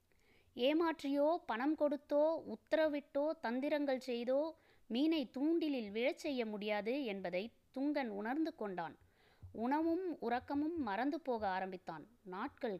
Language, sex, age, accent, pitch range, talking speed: Tamil, female, 20-39, native, 200-285 Hz, 100 wpm